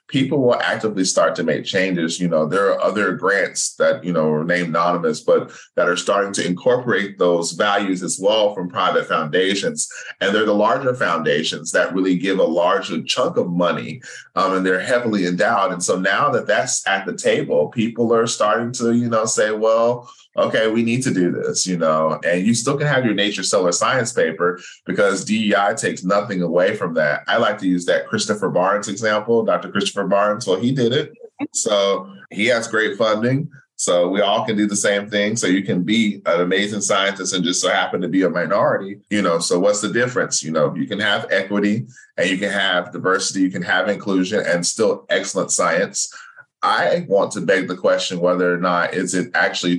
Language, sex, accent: English, male, American